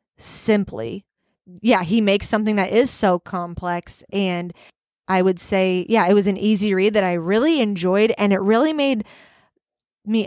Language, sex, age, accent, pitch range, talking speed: English, female, 20-39, American, 185-220 Hz, 165 wpm